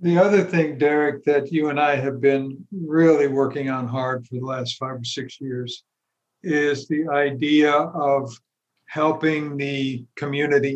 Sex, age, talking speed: male, 60-79, 155 wpm